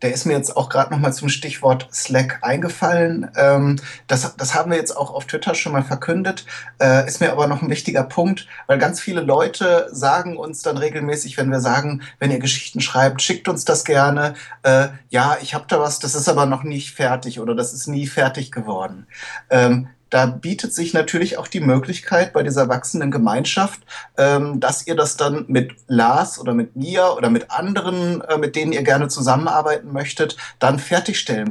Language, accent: German, German